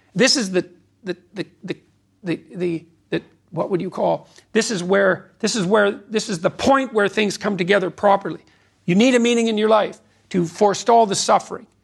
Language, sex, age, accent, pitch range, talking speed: English, male, 50-69, American, 185-240 Hz, 195 wpm